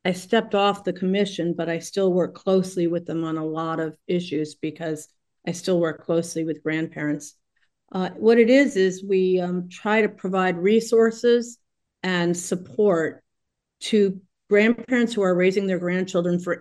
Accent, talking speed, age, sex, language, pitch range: American, 165 wpm, 40-59, female, English, 165-185 Hz